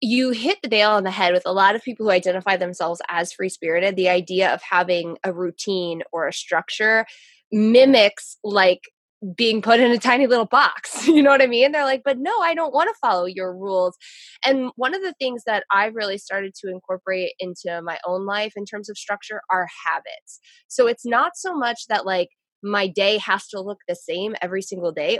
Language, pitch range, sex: English, 185-250 Hz, female